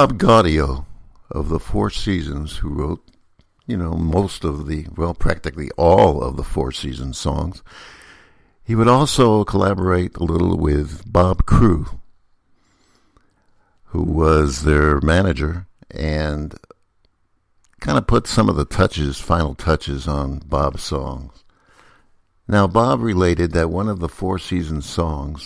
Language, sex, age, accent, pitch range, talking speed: English, male, 60-79, American, 75-100 Hz, 135 wpm